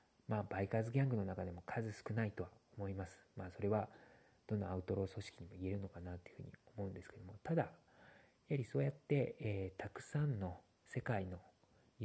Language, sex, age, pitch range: Japanese, male, 40-59, 95-130 Hz